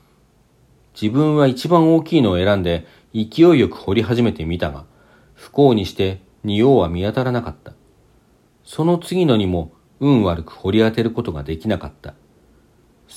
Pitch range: 85-125 Hz